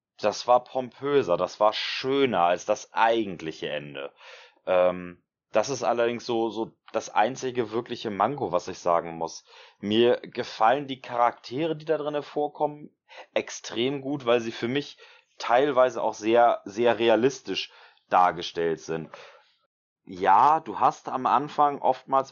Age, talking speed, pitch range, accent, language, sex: 30-49, 135 wpm, 105-130 Hz, German, German, male